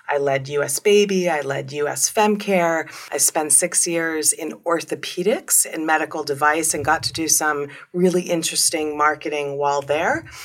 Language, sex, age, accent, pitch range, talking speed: English, female, 30-49, American, 145-170 Hz, 155 wpm